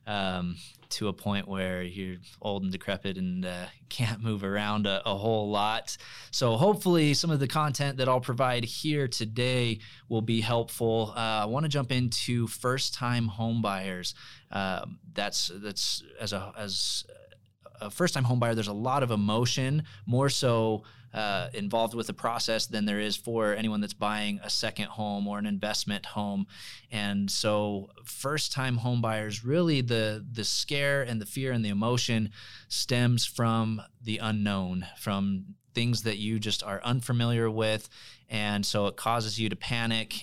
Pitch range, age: 105-120 Hz, 20-39